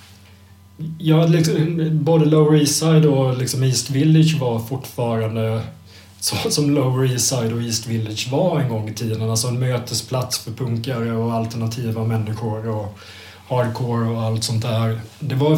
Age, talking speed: 30-49, 160 wpm